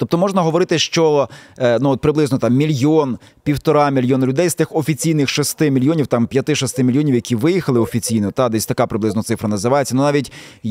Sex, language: male, Ukrainian